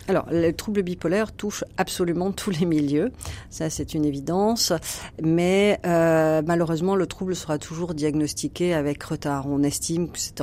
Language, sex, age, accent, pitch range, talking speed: French, female, 40-59, French, 145-175 Hz, 155 wpm